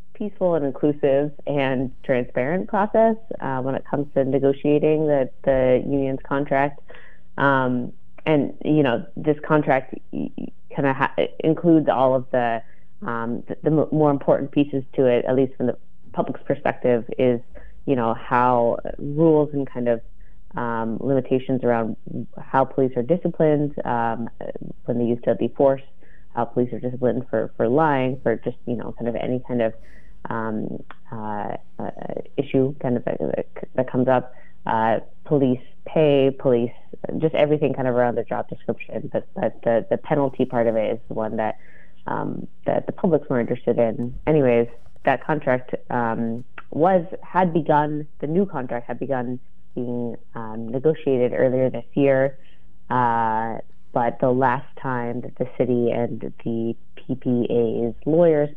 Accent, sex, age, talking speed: American, female, 30-49, 155 wpm